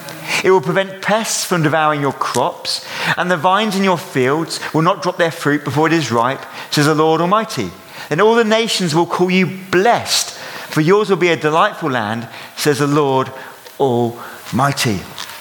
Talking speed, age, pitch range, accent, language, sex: 180 wpm, 40-59, 130-185 Hz, British, English, male